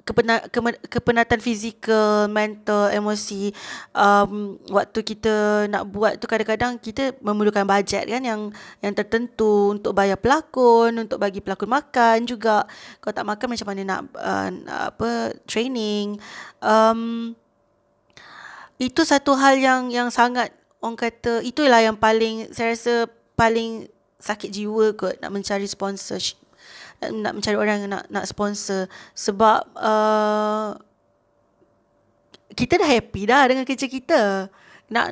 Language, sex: Malay, female